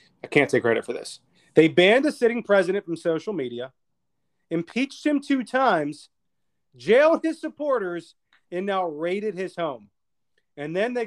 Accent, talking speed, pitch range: American, 155 wpm, 150-205 Hz